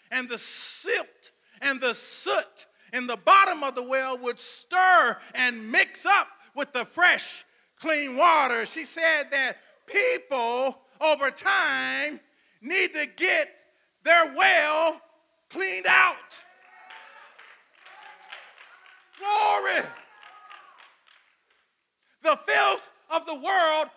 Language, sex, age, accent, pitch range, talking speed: English, male, 40-59, American, 290-365 Hz, 105 wpm